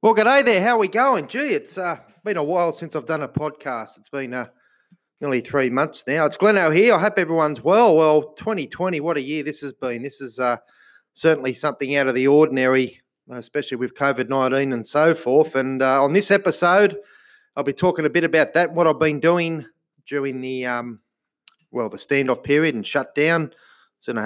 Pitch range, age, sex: 130-165 Hz, 30-49, male